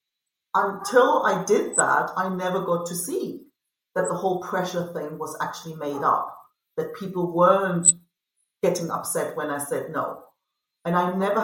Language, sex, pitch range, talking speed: English, female, 165-210 Hz, 155 wpm